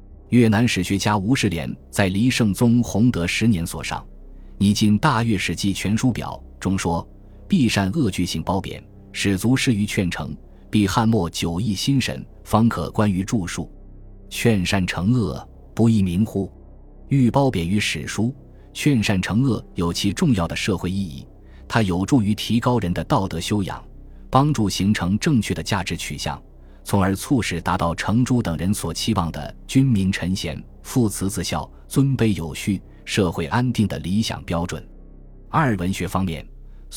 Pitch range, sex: 85-115 Hz, male